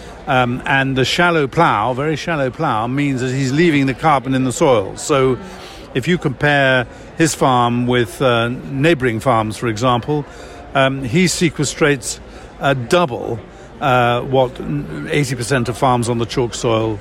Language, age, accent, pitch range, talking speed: English, 50-69, British, 120-145 Hz, 150 wpm